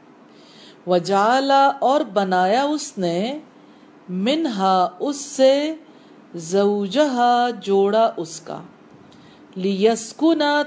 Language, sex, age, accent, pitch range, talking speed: English, female, 40-59, Indian, 200-295 Hz, 55 wpm